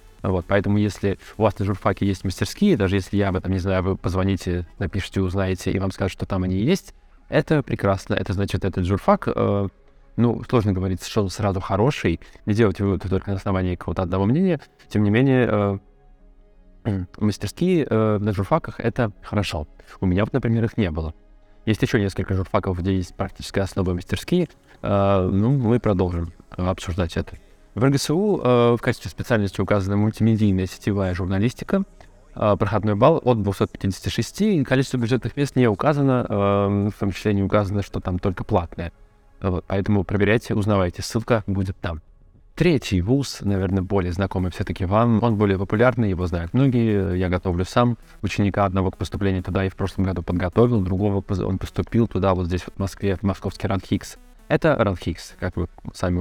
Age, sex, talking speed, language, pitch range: 20-39, male, 175 wpm, Russian, 95-110 Hz